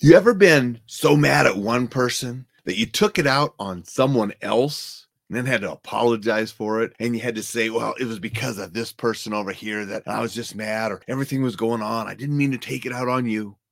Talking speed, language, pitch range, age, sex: 245 wpm, English, 90-120 Hz, 30-49, male